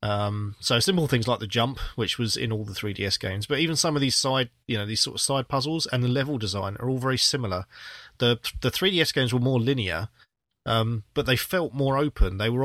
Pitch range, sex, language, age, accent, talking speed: 110-135 Hz, male, English, 30-49, British, 245 wpm